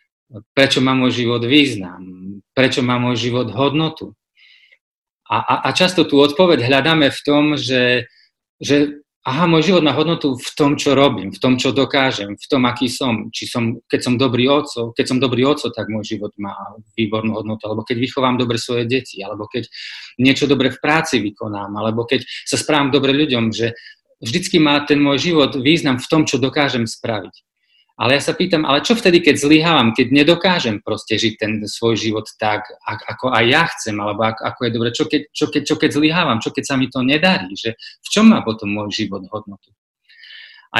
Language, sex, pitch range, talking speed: Slovak, male, 115-150 Hz, 190 wpm